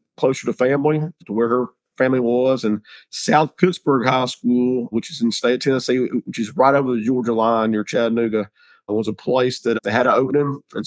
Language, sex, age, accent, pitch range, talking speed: English, male, 50-69, American, 115-135 Hz, 215 wpm